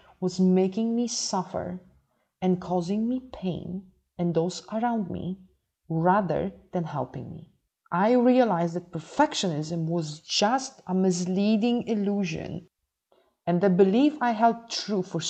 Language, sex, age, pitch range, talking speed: English, female, 30-49, 165-215 Hz, 125 wpm